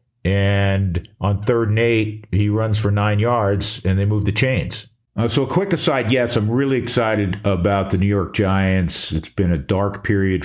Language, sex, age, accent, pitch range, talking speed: English, male, 50-69, American, 85-105 Hz, 195 wpm